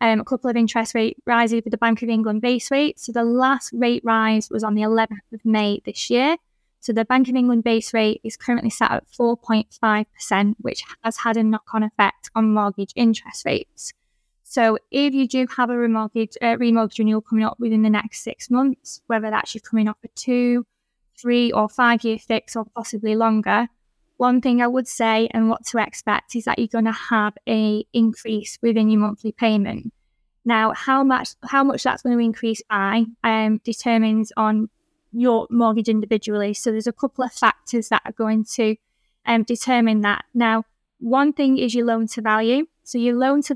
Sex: female